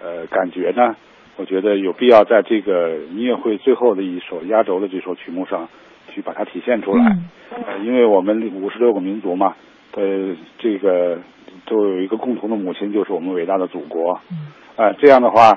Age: 50-69